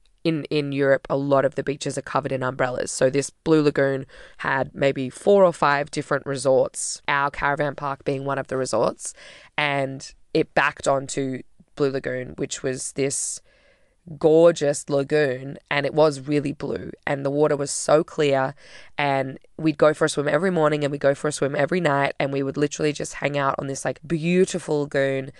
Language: English